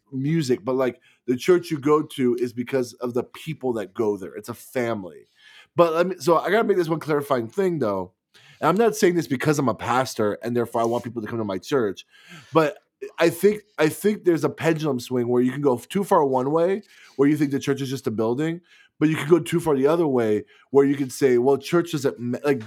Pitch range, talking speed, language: 120-160 Hz, 245 wpm, English